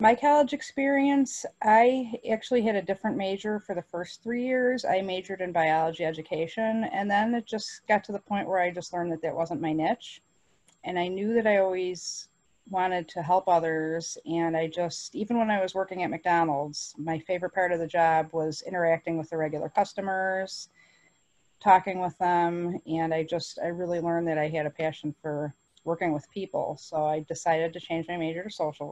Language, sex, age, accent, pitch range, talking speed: English, female, 30-49, American, 165-210 Hz, 195 wpm